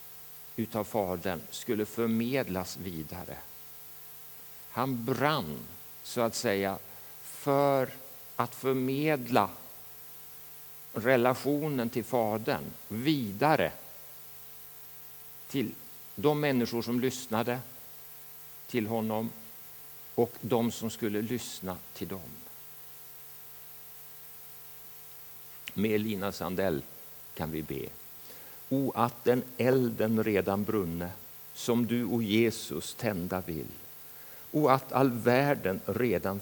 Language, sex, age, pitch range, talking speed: Swedish, male, 60-79, 75-120 Hz, 90 wpm